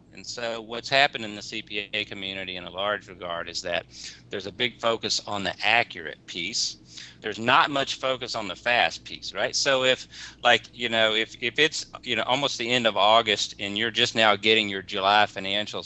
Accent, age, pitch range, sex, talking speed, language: American, 40-59, 95-115 Hz, male, 205 wpm, English